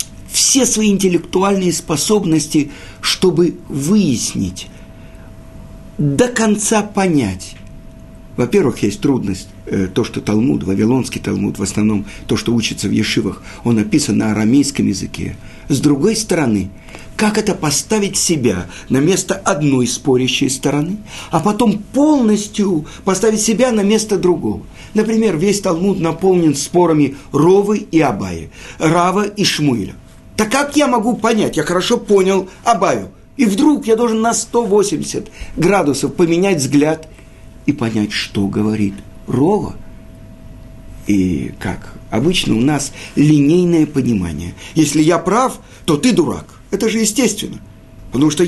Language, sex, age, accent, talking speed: Russian, male, 50-69, native, 125 wpm